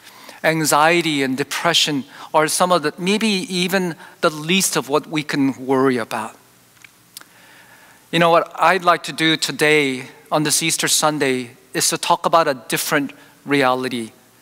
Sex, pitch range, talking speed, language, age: male, 145-175 Hz, 150 wpm, English, 40-59